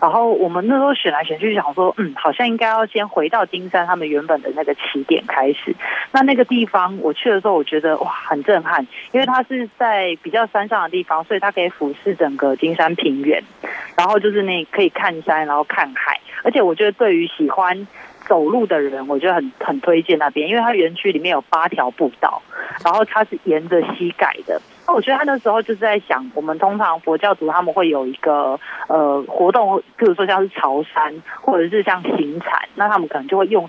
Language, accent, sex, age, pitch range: Chinese, native, female, 30-49, 155-215 Hz